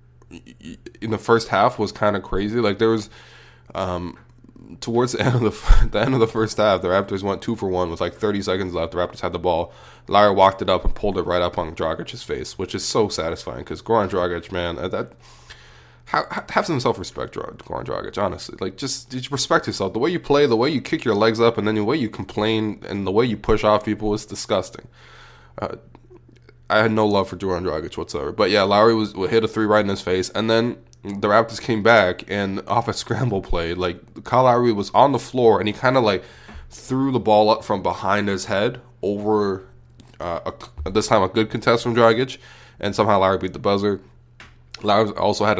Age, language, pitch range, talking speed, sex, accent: 20-39, English, 95-115 Hz, 220 wpm, male, American